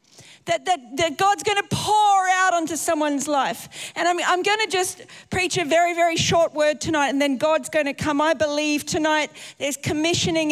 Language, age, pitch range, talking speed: English, 40-59, 290-350 Hz, 185 wpm